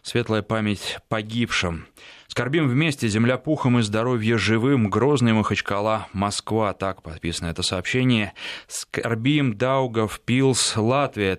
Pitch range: 100-120 Hz